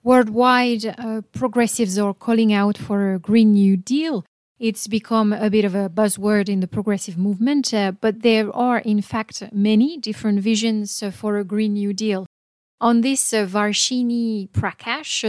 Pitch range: 200-230 Hz